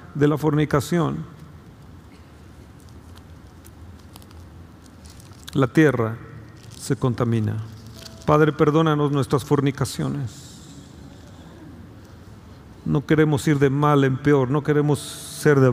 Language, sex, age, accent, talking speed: Spanish, male, 50-69, Mexican, 85 wpm